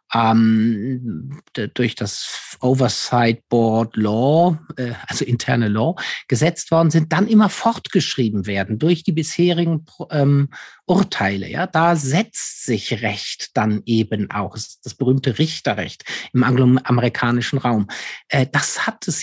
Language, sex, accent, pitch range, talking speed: German, male, German, 125-175 Hz, 110 wpm